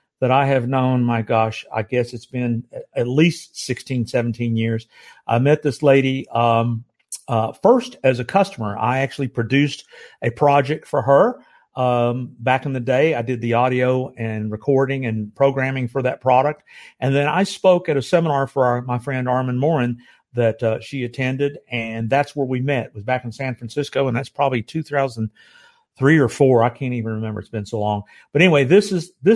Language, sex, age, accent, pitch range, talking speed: English, male, 50-69, American, 120-160 Hz, 190 wpm